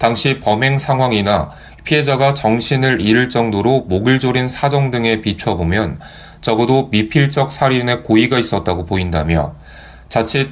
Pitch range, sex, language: 95-135 Hz, male, Korean